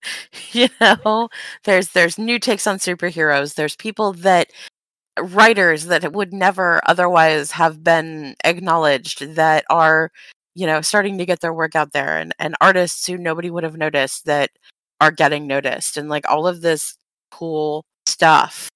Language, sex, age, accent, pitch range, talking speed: English, female, 30-49, American, 150-180 Hz, 155 wpm